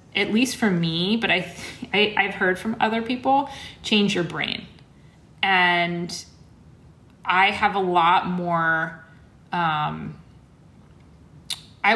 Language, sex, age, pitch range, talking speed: English, female, 30-49, 170-210 Hz, 125 wpm